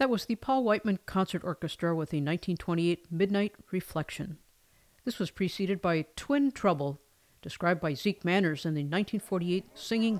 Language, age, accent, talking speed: English, 50-69, American, 155 wpm